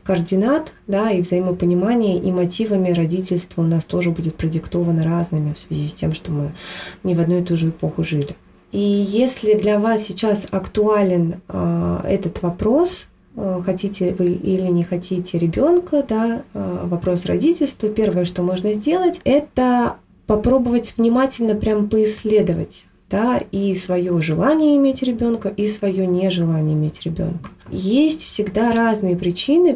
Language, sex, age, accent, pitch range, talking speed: Russian, female, 20-39, native, 175-220 Hz, 145 wpm